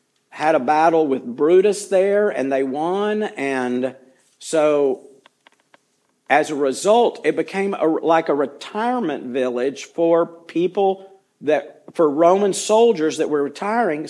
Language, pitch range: English, 145-200 Hz